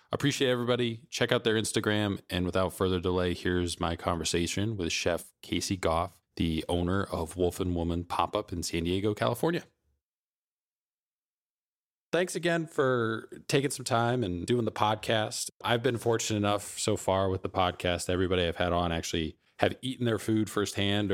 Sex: male